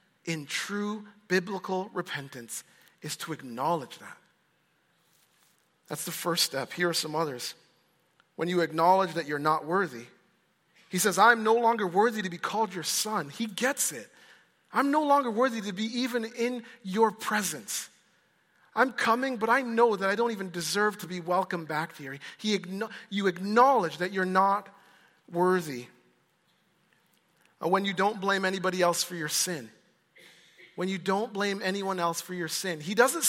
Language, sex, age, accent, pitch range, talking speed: English, male, 40-59, American, 180-245 Hz, 160 wpm